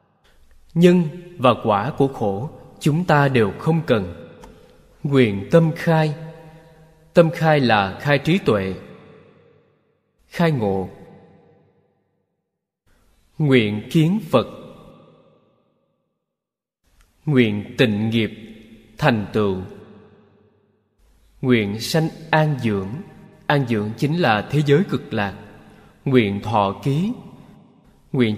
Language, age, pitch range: Vietnamese, 20-39, 105-155 Hz